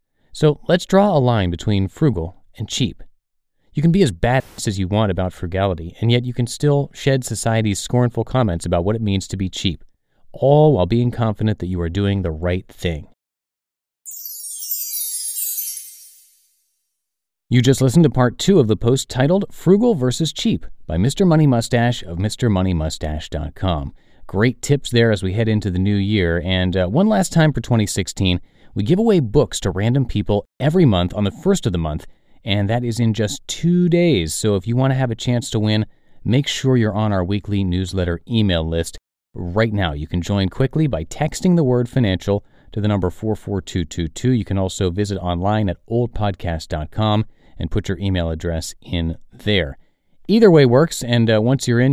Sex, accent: male, American